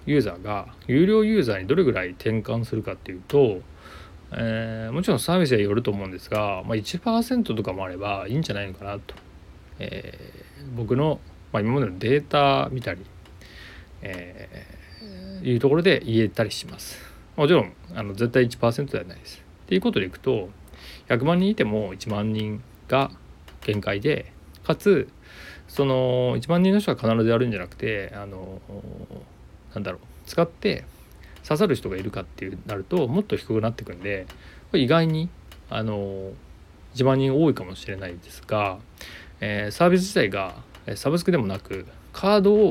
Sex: male